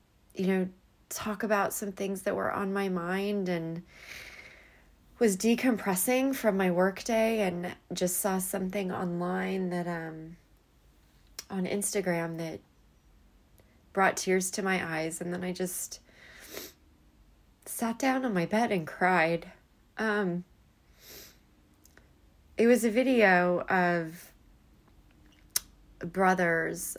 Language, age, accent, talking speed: English, 30-49, American, 115 wpm